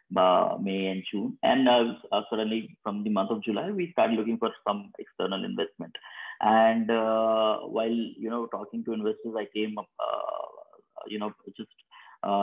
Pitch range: 100-115 Hz